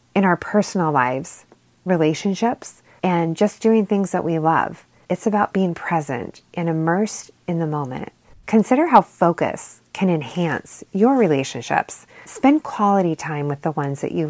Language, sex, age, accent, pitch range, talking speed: English, female, 30-49, American, 155-195 Hz, 150 wpm